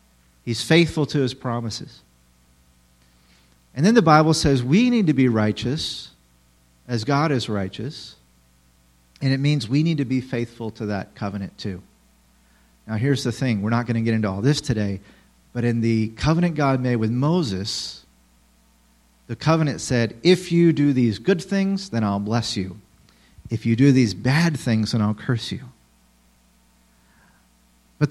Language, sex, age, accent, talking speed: English, male, 40-59, American, 160 wpm